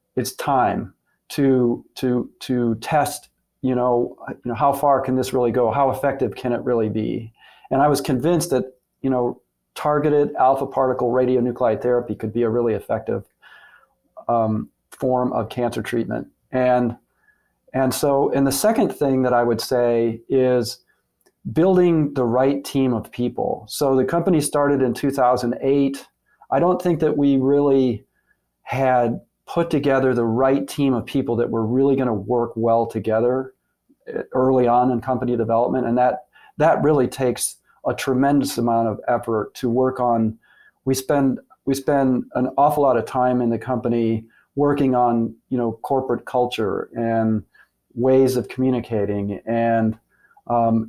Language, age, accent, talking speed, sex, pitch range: English, 40-59, American, 155 wpm, male, 120-135 Hz